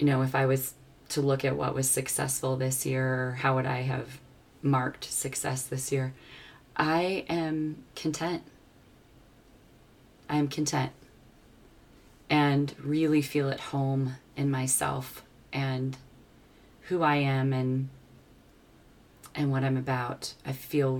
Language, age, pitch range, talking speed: English, 30-49, 130-145 Hz, 130 wpm